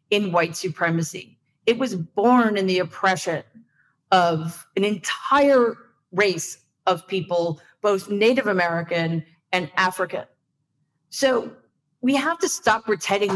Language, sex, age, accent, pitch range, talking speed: English, female, 40-59, American, 175-245 Hz, 115 wpm